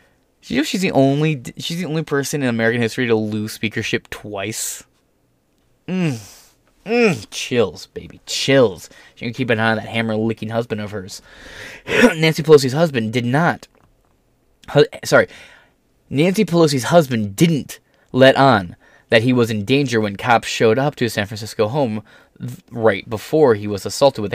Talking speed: 165 wpm